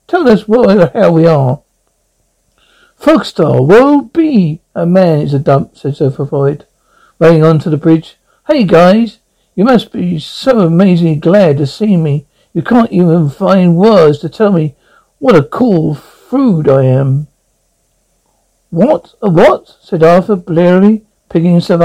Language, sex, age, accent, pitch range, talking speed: English, male, 60-79, British, 165-240 Hz, 155 wpm